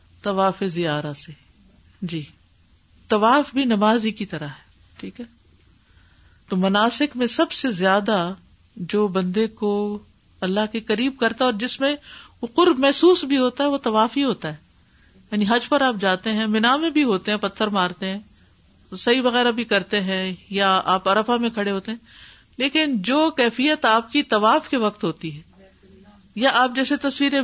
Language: Urdu